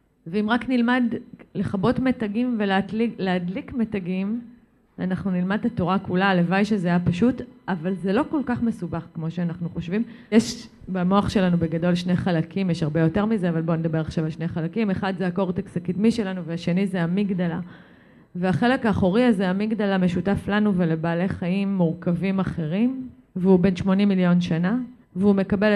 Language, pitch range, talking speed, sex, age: Hebrew, 175-230 Hz, 155 wpm, female, 30-49